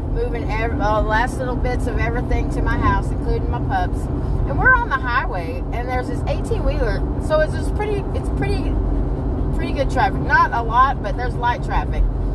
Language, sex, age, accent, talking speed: English, female, 30-49, American, 195 wpm